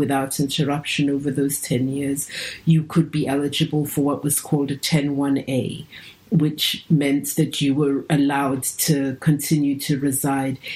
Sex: female